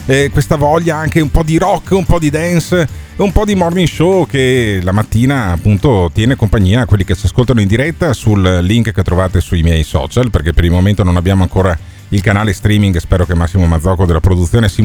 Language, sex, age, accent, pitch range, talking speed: Italian, male, 40-59, native, 90-125 Hz, 220 wpm